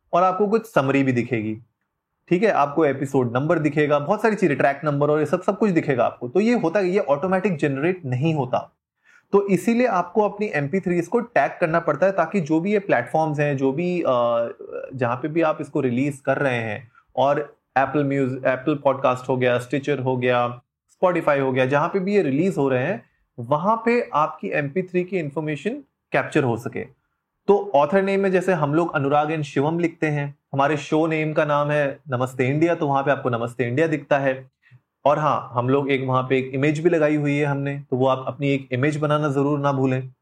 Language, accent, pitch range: Hindi, native, 135-175 Hz